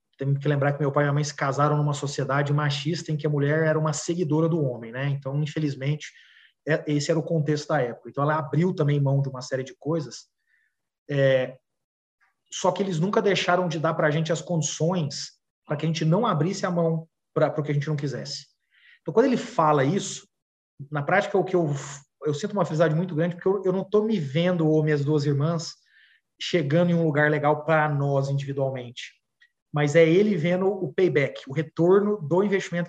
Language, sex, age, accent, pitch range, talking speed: Portuguese, male, 30-49, Brazilian, 145-175 Hz, 210 wpm